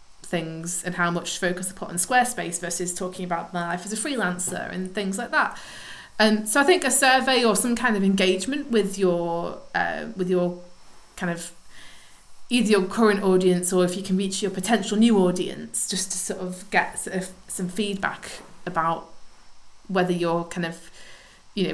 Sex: female